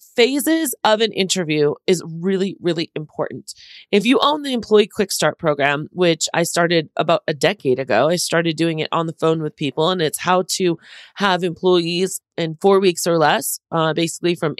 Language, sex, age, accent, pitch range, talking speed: English, female, 30-49, American, 155-190 Hz, 190 wpm